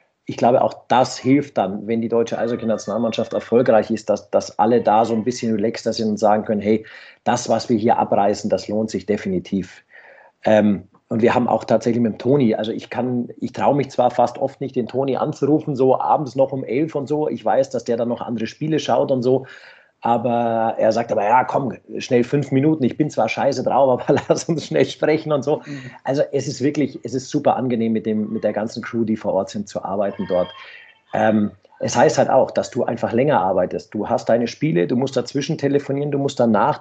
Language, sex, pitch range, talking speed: German, male, 115-140 Hz, 220 wpm